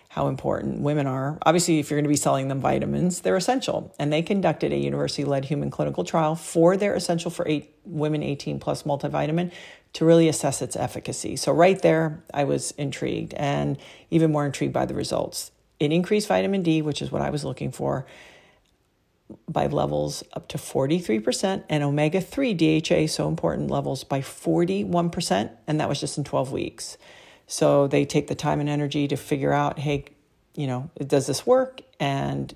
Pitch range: 140-170 Hz